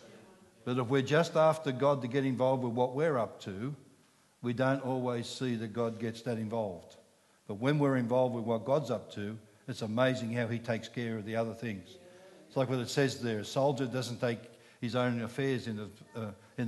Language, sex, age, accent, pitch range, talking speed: English, male, 60-79, Australian, 115-135 Hz, 210 wpm